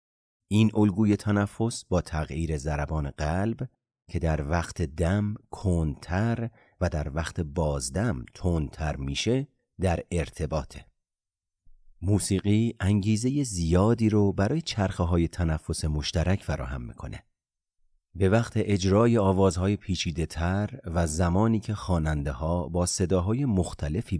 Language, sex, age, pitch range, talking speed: Persian, male, 40-59, 80-105 Hz, 110 wpm